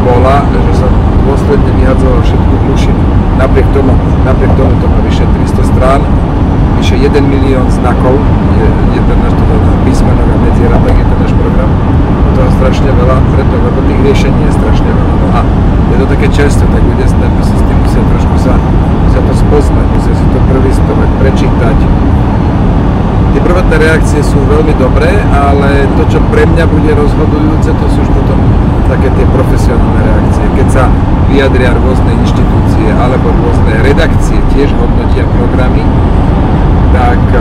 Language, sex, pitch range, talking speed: Slovak, male, 90-100 Hz, 145 wpm